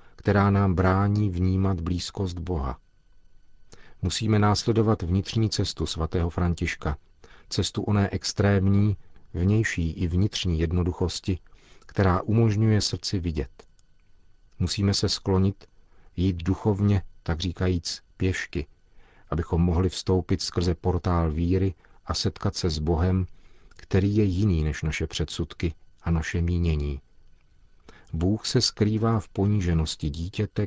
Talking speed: 110 wpm